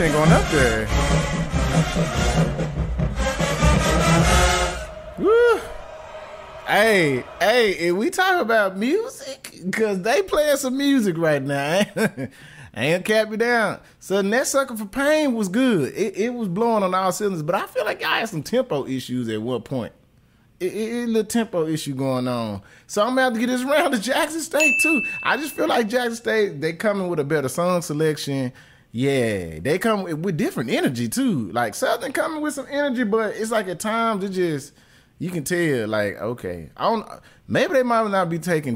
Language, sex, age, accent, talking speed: English, male, 20-39, American, 180 wpm